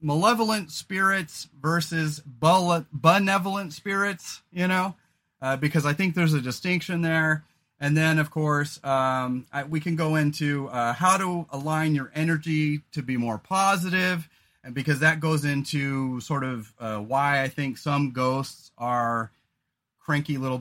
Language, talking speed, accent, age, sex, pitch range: English, 145 wpm, American, 30-49, male, 130-170 Hz